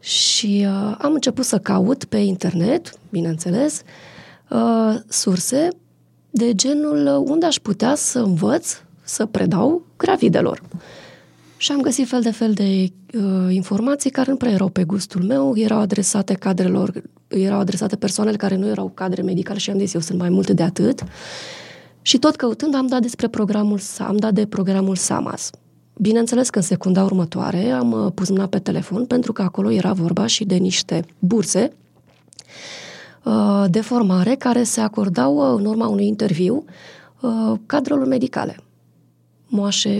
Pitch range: 190-240 Hz